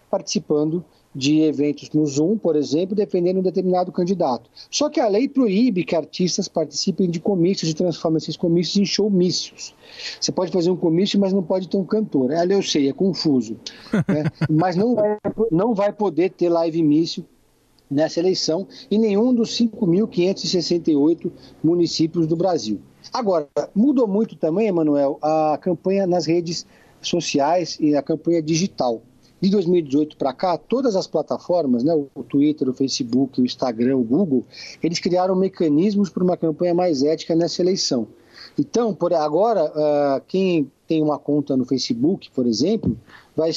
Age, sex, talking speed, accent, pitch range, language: 50-69, male, 155 wpm, Brazilian, 145-190 Hz, Portuguese